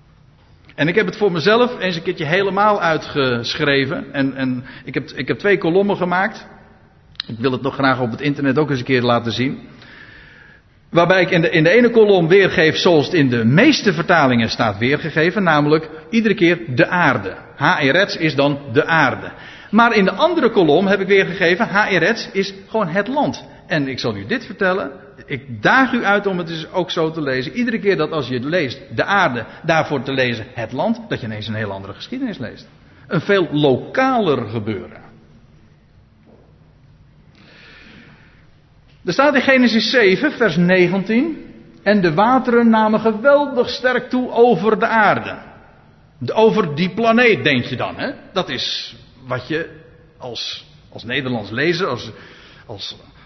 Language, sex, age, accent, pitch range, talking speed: Dutch, male, 50-69, Dutch, 135-210 Hz, 165 wpm